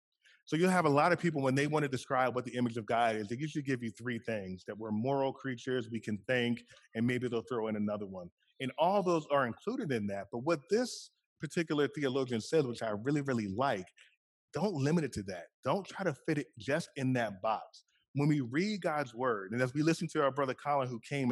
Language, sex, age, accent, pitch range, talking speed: English, male, 30-49, American, 115-155 Hz, 240 wpm